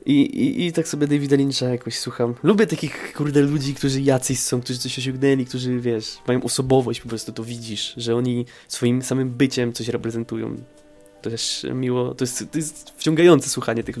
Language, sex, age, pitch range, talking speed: Polish, male, 20-39, 120-135 Hz, 190 wpm